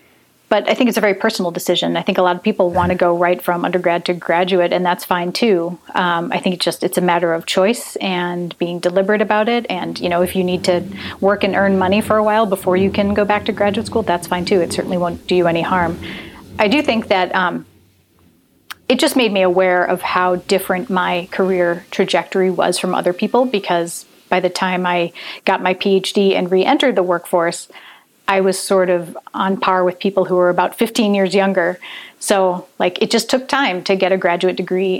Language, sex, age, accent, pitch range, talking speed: English, female, 30-49, American, 175-195 Hz, 225 wpm